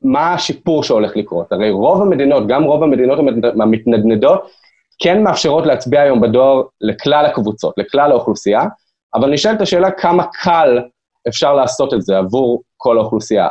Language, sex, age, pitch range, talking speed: Hebrew, male, 20-39, 120-175 Hz, 140 wpm